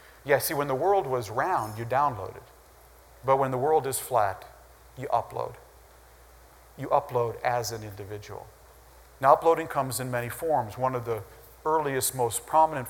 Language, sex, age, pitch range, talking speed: English, male, 40-59, 120-180 Hz, 160 wpm